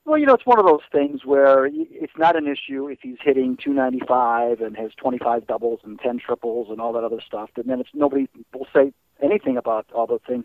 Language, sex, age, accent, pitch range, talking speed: English, male, 50-69, American, 120-150 Hz, 230 wpm